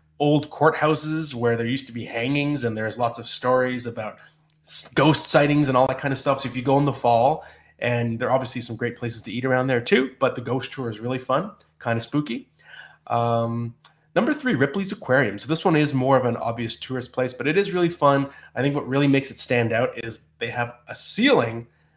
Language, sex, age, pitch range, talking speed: English, male, 20-39, 120-145 Hz, 230 wpm